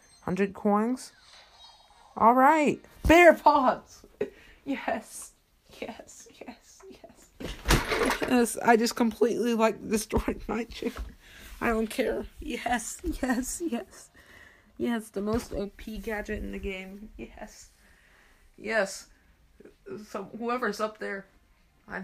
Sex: female